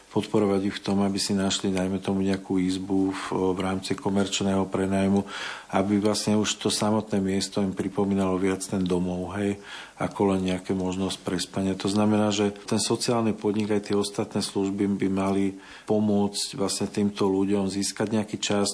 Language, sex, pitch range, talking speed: Slovak, male, 95-100 Hz, 165 wpm